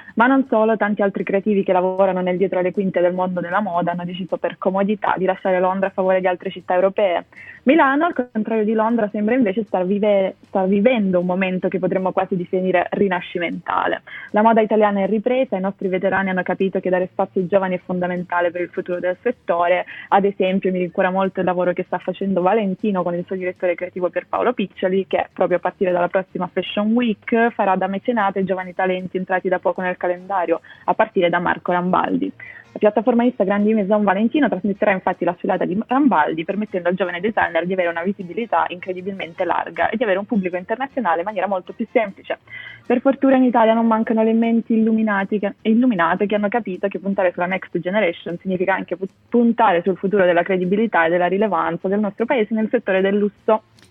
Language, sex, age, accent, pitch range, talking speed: Italian, female, 20-39, native, 185-215 Hz, 200 wpm